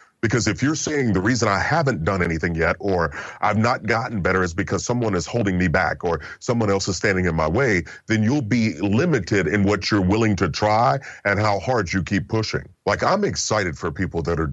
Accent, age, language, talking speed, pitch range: American, 40-59, English, 225 wpm, 85-110 Hz